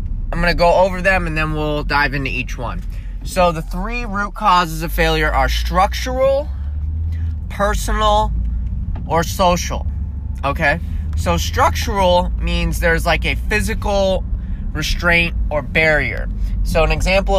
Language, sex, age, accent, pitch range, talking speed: English, male, 20-39, American, 95-160 Hz, 130 wpm